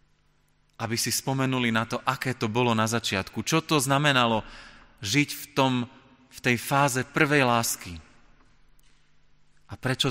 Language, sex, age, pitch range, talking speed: Slovak, male, 30-49, 110-140 Hz, 130 wpm